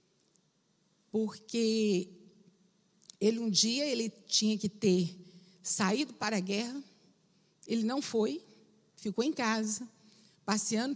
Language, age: Portuguese, 50-69